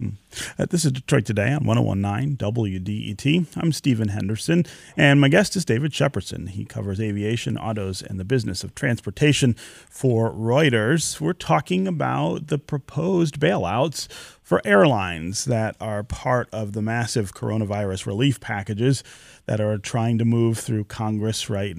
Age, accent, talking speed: 30-49, American, 145 wpm